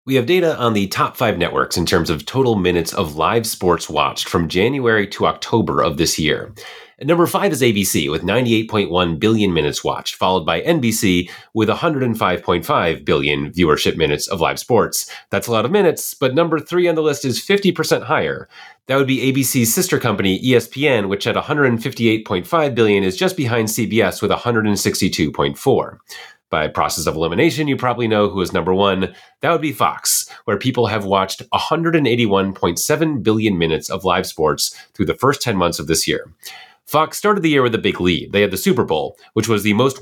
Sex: male